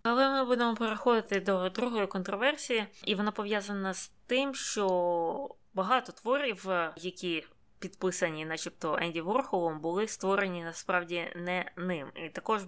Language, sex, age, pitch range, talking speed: Ukrainian, female, 20-39, 175-205 Hz, 130 wpm